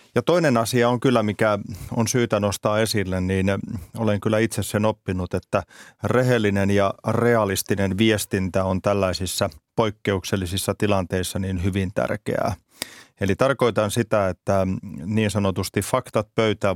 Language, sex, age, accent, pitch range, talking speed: Finnish, male, 30-49, native, 100-115 Hz, 130 wpm